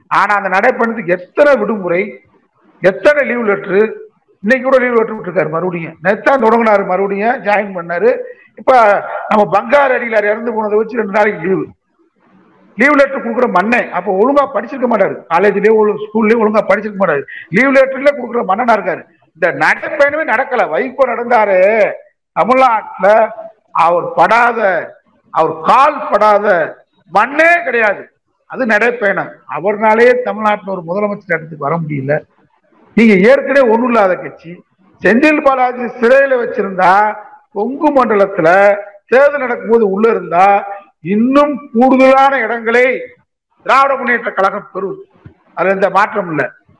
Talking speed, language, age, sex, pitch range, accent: 105 wpm, Tamil, 50-69, male, 205-280 Hz, native